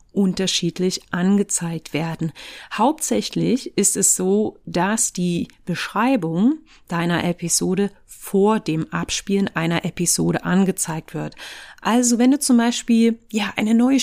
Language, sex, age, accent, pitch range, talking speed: German, female, 30-49, German, 170-225 Hz, 115 wpm